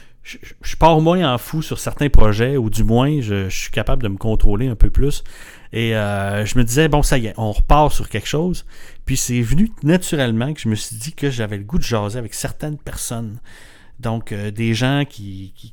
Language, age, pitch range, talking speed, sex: French, 30-49, 110-140 Hz, 230 wpm, male